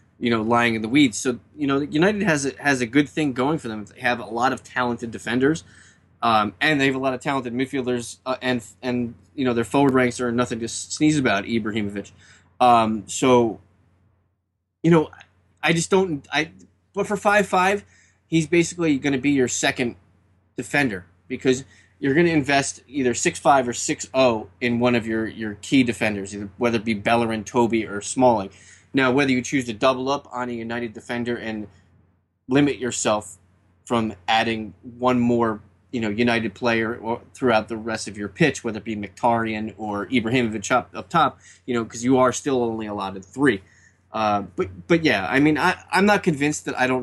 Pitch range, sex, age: 105-130 Hz, male, 20-39